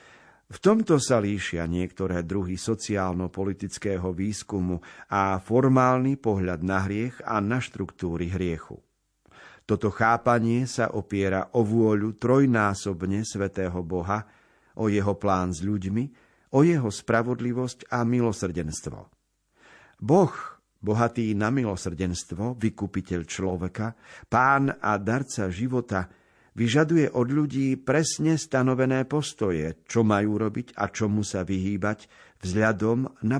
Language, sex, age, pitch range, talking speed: Slovak, male, 50-69, 95-125 Hz, 110 wpm